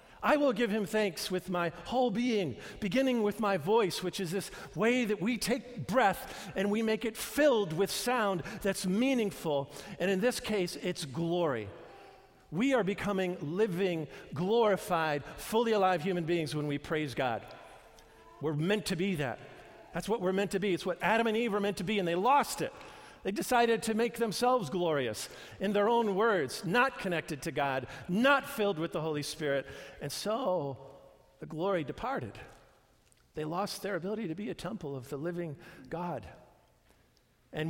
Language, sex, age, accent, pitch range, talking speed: English, male, 50-69, American, 155-205 Hz, 175 wpm